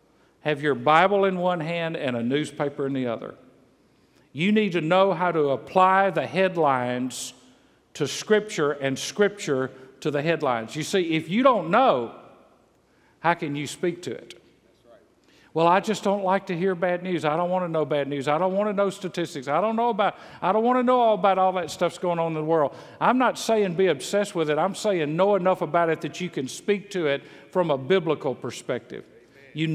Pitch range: 150-195 Hz